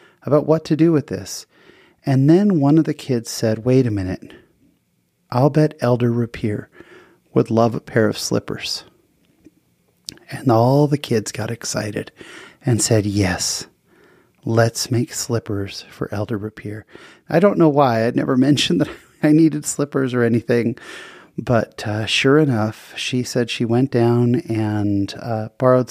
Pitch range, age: 105-125 Hz, 30-49